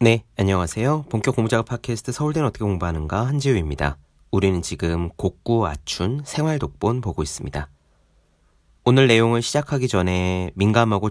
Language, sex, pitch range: Korean, male, 80-120 Hz